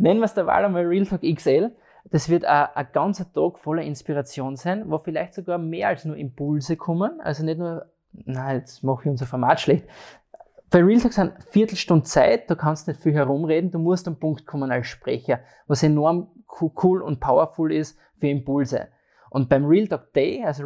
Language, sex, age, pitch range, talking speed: German, male, 20-39, 140-170 Hz, 200 wpm